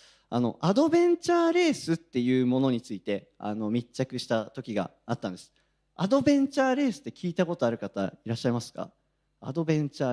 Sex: male